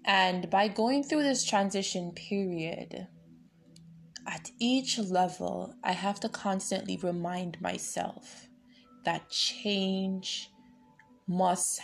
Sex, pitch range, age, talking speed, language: female, 170-200 Hz, 20-39, 95 wpm, English